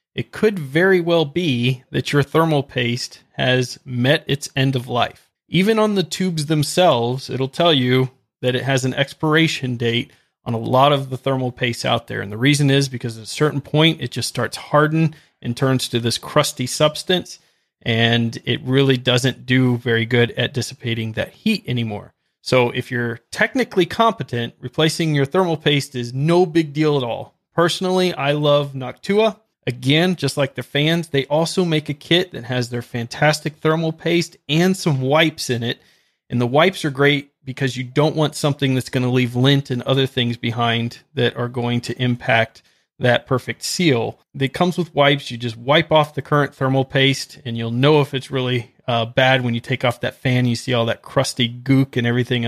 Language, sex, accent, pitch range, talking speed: English, male, American, 120-155 Hz, 195 wpm